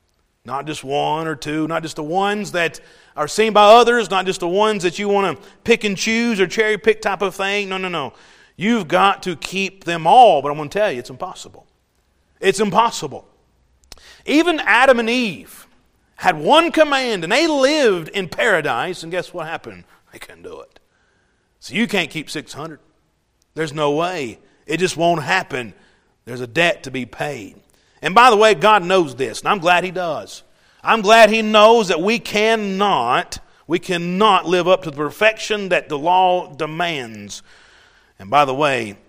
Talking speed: 185 wpm